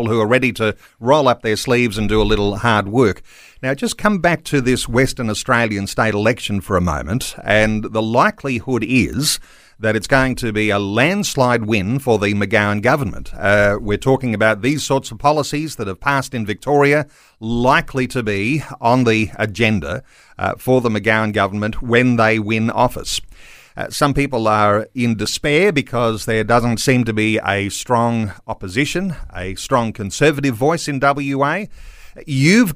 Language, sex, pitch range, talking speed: English, male, 110-135 Hz, 170 wpm